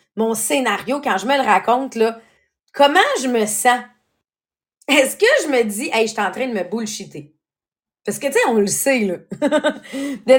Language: English